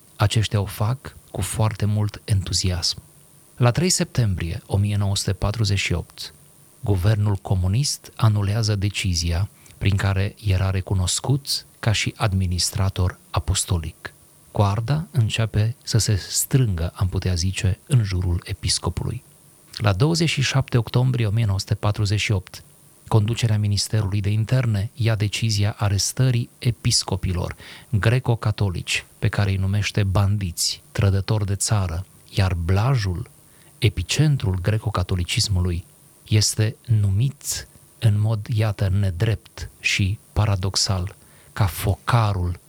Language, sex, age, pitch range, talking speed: Romanian, male, 30-49, 95-115 Hz, 95 wpm